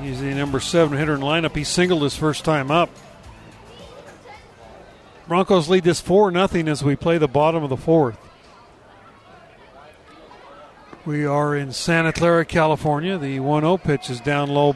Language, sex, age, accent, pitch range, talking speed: English, male, 50-69, American, 145-175 Hz, 155 wpm